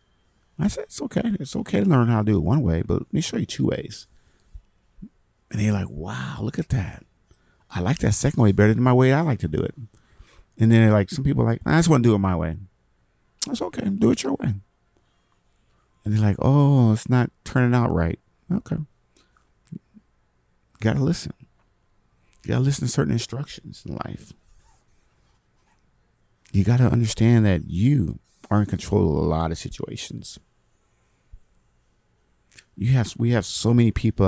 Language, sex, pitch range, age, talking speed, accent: English, male, 85-110 Hz, 50-69, 180 wpm, American